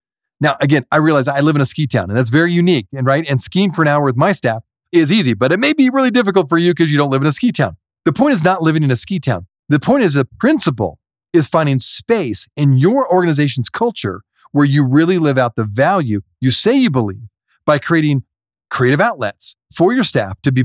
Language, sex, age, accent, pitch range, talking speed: English, male, 40-59, American, 120-170 Hz, 240 wpm